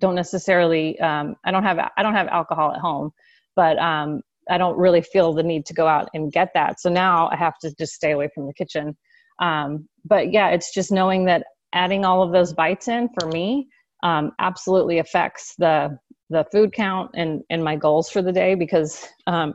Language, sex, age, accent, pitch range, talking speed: English, female, 30-49, American, 165-190 Hz, 210 wpm